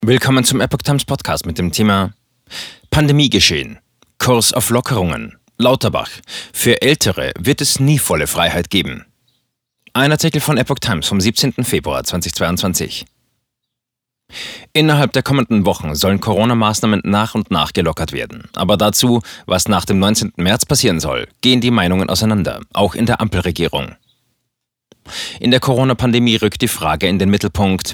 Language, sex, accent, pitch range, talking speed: German, male, German, 95-120 Hz, 145 wpm